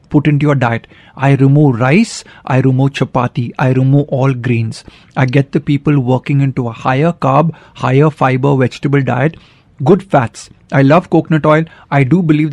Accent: native